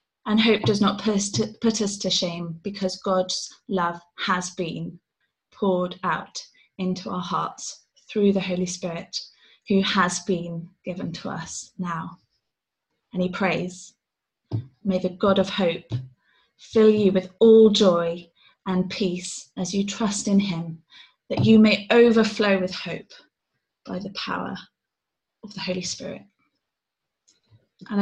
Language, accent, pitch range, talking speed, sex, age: English, British, 180-205 Hz, 135 wpm, female, 20-39